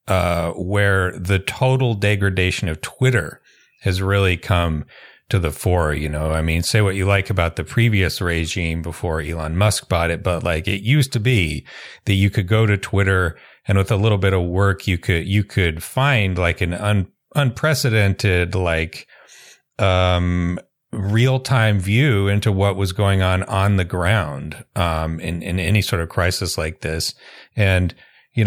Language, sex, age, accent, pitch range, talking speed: English, male, 40-59, American, 90-105 Hz, 175 wpm